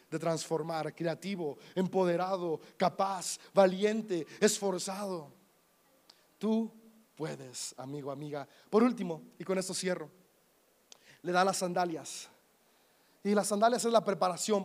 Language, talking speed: Spanish, 110 wpm